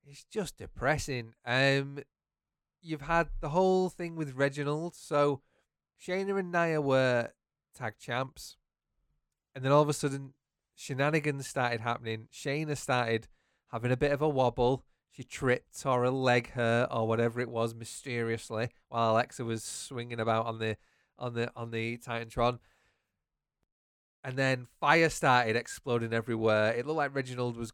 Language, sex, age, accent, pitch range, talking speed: English, male, 30-49, British, 115-145 Hz, 150 wpm